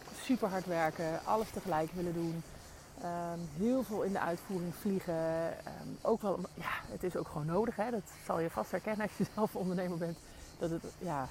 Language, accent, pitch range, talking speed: Dutch, Dutch, 165-195 Hz, 195 wpm